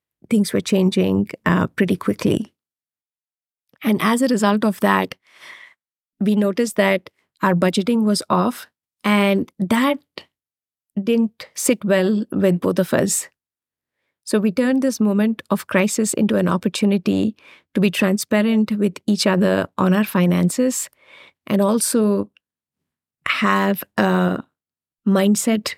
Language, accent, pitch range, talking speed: English, Indian, 190-230 Hz, 120 wpm